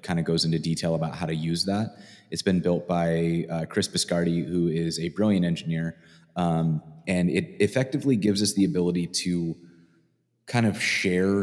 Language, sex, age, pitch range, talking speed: English, male, 20-39, 85-100 Hz, 180 wpm